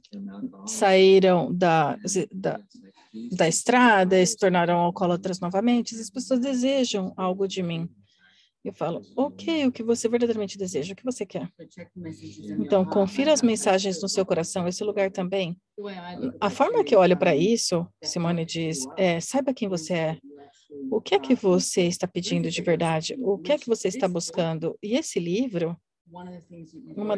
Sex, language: female, Portuguese